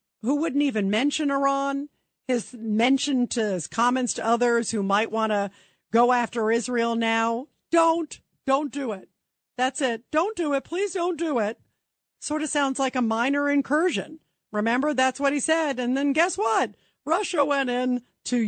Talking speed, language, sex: 170 wpm, English, female